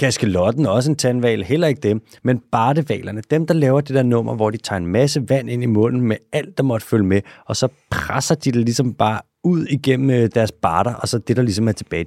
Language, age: Danish, 30-49